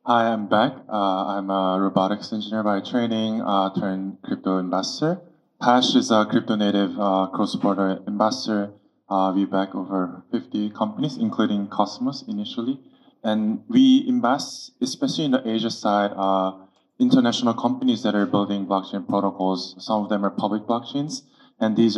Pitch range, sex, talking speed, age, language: 100-120 Hz, male, 150 wpm, 20-39, English